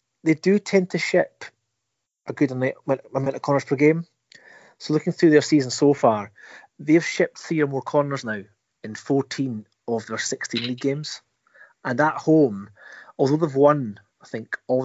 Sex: male